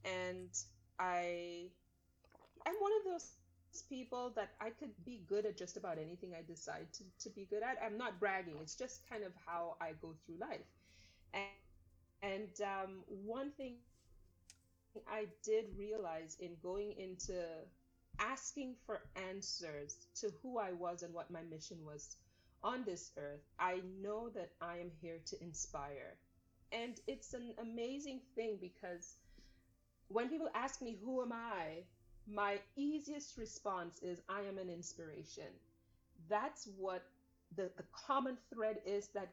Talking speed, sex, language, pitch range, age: 150 wpm, female, English, 170-215 Hz, 30-49